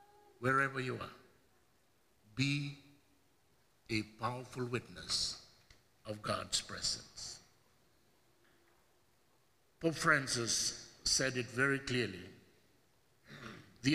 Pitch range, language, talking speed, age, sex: 115-165 Hz, English, 75 wpm, 60-79, male